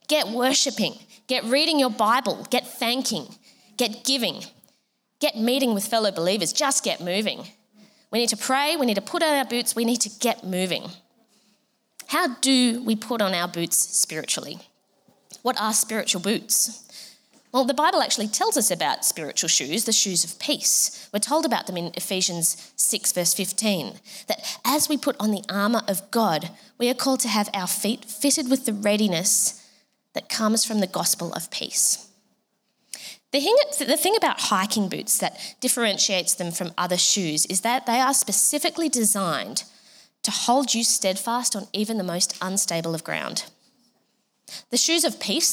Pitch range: 200-260 Hz